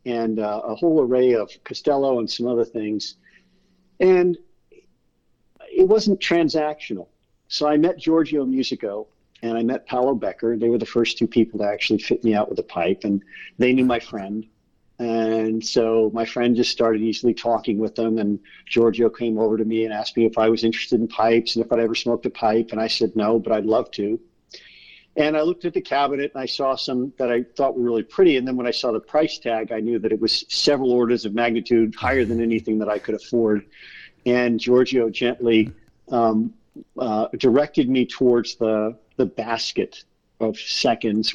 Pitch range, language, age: 110-130 Hz, English, 50-69